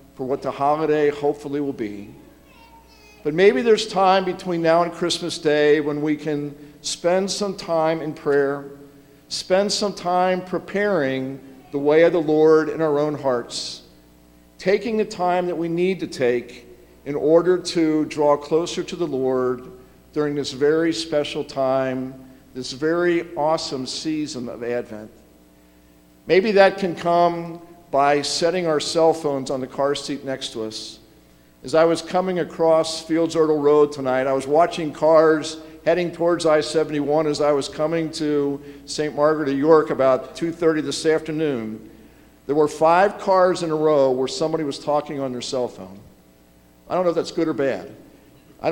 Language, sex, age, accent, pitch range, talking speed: English, male, 50-69, American, 135-165 Hz, 165 wpm